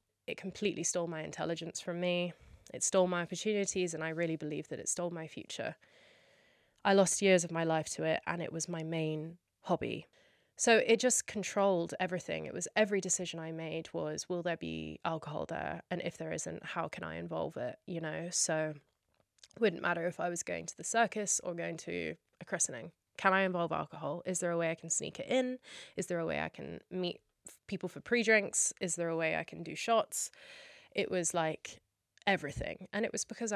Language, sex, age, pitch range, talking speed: English, female, 20-39, 160-195 Hz, 210 wpm